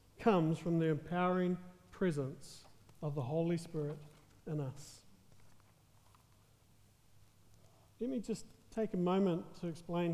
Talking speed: 110 wpm